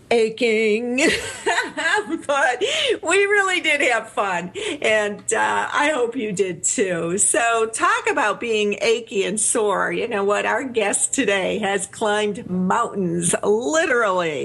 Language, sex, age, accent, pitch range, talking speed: English, female, 50-69, American, 180-225 Hz, 130 wpm